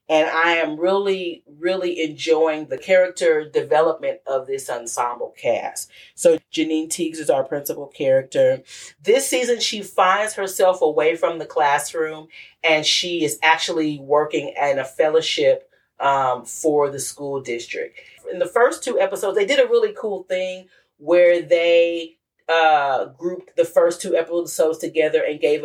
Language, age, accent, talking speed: English, 40-59, American, 150 wpm